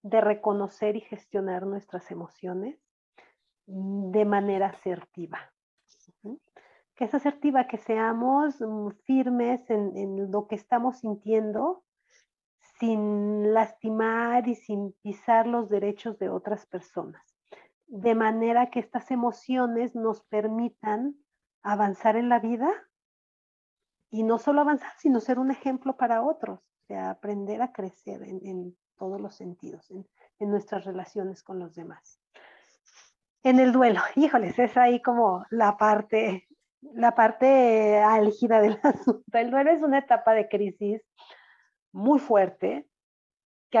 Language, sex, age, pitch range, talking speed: Spanish, female, 40-59, 200-245 Hz, 125 wpm